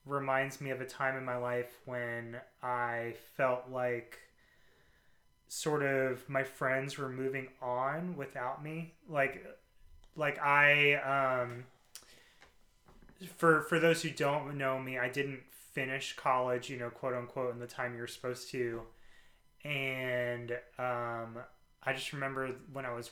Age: 20-39